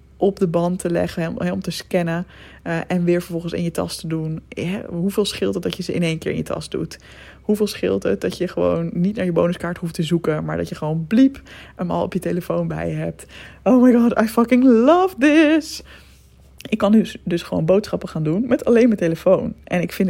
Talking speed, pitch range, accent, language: 235 wpm, 160-200 Hz, Dutch, Dutch